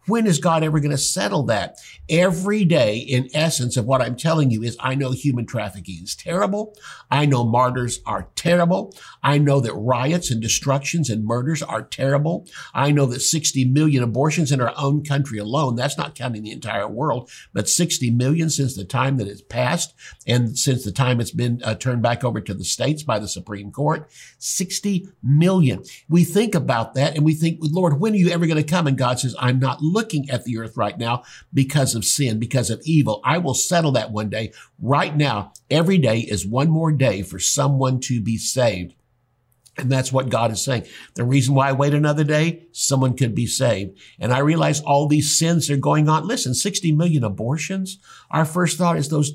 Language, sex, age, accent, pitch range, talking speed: English, male, 60-79, American, 120-155 Hz, 210 wpm